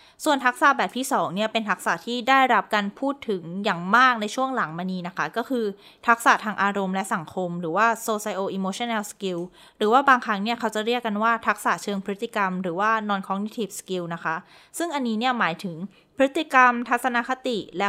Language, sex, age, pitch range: Thai, female, 20-39, 190-245 Hz